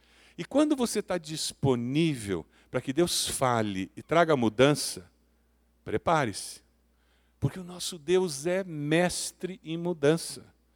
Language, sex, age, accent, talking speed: Portuguese, male, 50-69, Brazilian, 115 wpm